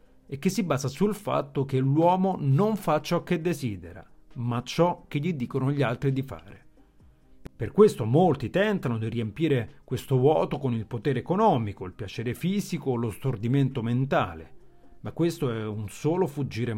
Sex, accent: male, native